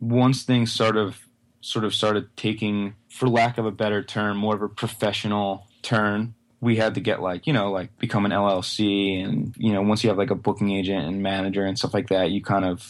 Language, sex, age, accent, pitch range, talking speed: English, male, 20-39, American, 95-115 Hz, 230 wpm